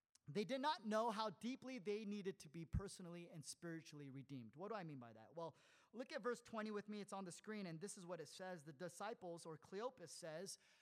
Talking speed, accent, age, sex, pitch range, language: 235 wpm, American, 30-49, male, 175-255 Hz, English